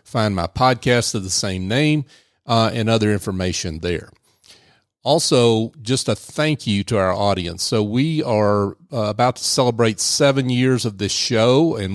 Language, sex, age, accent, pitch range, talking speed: English, male, 40-59, American, 100-125 Hz, 165 wpm